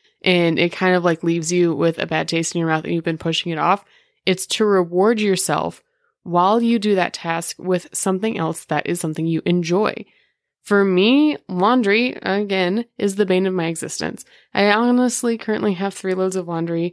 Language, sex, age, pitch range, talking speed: English, female, 20-39, 180-250 Hz, 195 wpm